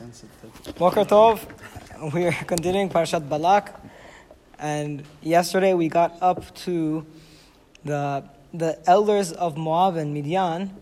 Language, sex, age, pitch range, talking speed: English, male, 20-39, 160-195 Hz, 105 wpm